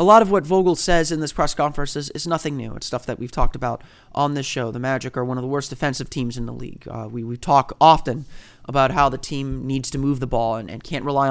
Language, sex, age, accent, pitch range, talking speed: English, male, 30-49, American, 125-155 Hz, 280 wpm